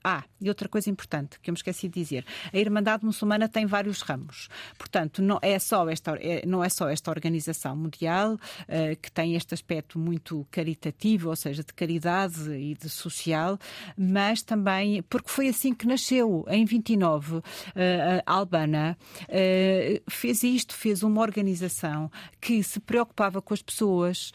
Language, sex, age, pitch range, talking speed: Portuguese, female, 40-59, 165-220 Hz, 165 wpm